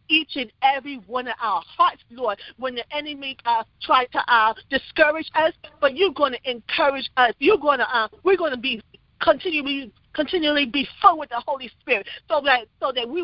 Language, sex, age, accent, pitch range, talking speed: English, female, 40-59, American, 230-295 Hz, 185 wpm